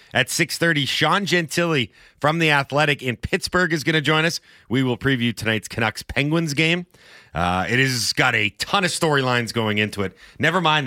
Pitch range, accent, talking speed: 115-165 Hz, American, 180 wpm